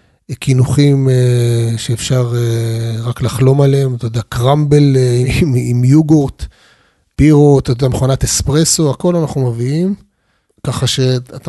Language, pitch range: Hebrew, 115-140 Hz